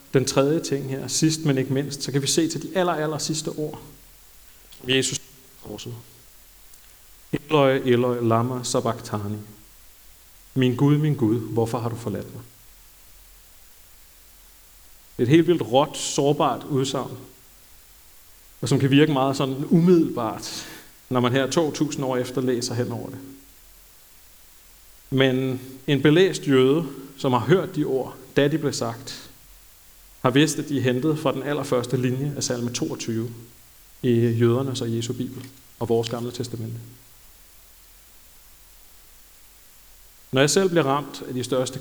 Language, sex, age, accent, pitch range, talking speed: Danish, male, 40-59, native, 95-135 Hz, 140 wpm